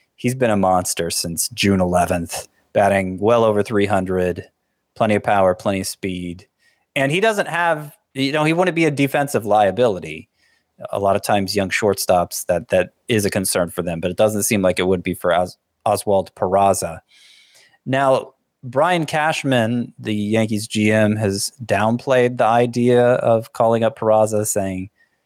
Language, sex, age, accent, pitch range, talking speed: English, male, 20-39, American, 95-120 Hz, 165 wpm